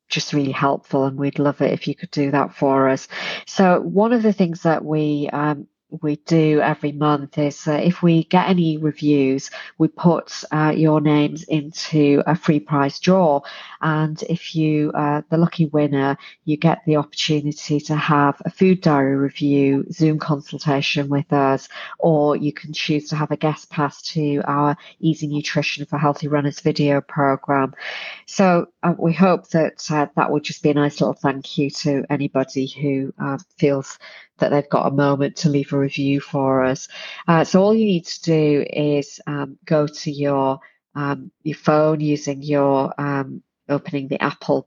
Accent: British